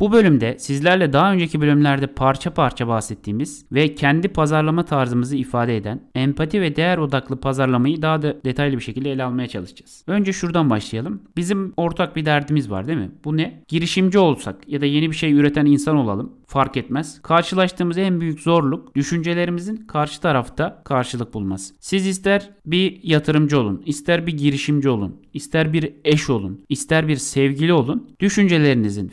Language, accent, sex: Turkish, native, male